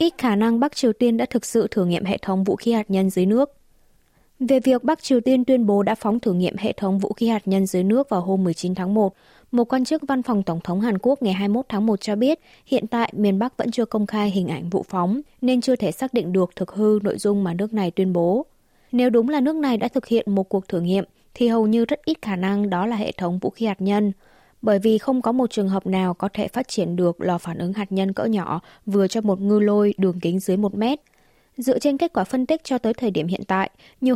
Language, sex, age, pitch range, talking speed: Vietnamese, female, 20-39, 190-240 Hz, 270 wpm